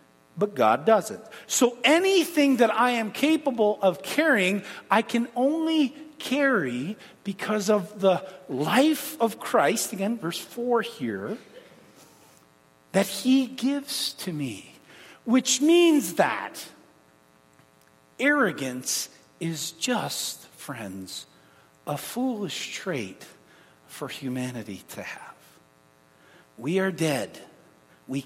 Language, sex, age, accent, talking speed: English, male, 50-69, American, 100 wpm